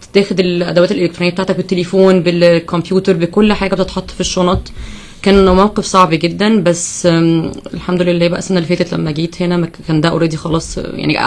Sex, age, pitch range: female, 20-39, 165-190 Hz